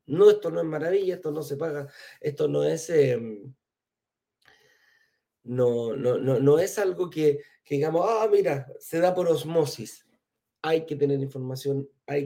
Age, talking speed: 40-59, 165 wpm